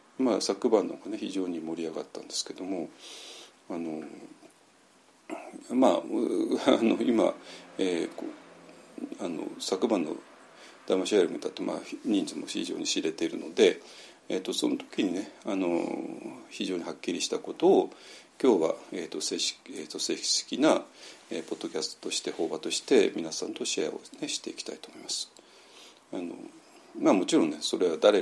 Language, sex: Japanese, male